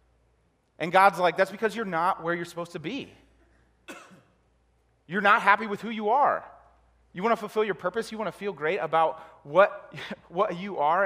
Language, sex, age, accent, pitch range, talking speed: English, male, 30-49, American, 140-200 Hz, 190 wpm